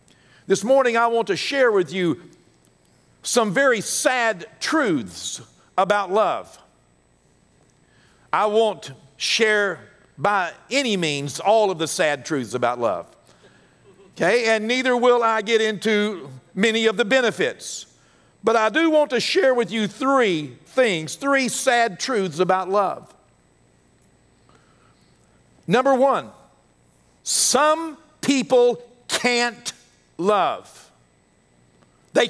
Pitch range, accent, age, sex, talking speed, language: 175-255 Hz, American, 50-69, male, 110 wpm, English